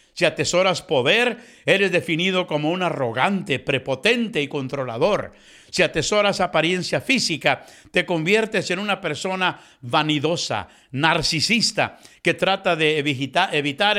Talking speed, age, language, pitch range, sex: 110 wpm, 60-79, English, 145-190 Hz, male